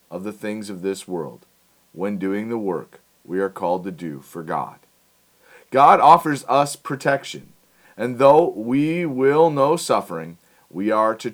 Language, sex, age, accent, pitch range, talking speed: English, male, 40-59, American, 105-140 Hz, 160 wpm